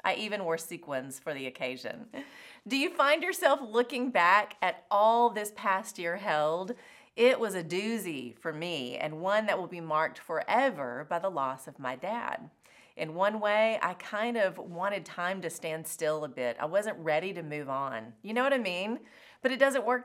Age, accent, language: 30-49, American, English